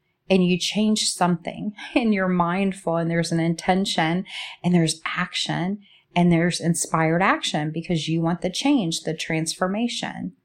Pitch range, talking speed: 165-195 Hz, 145 wpm